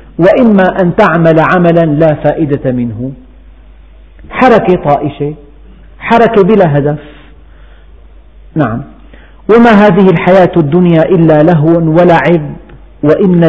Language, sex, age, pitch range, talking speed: Arabic, male, 50-69, 130-190 Hz, 95 wpm